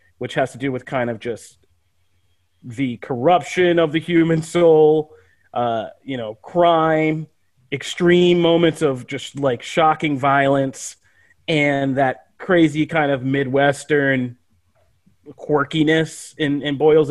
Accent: American